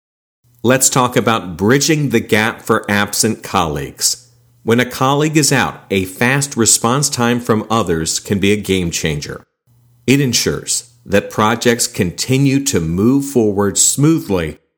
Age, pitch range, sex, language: 50-69, 95-130 Hz, male, English